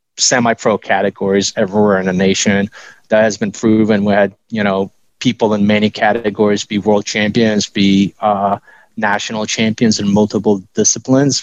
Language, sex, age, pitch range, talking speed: English, male, 30-49, 100-110 Hz, 145 wpm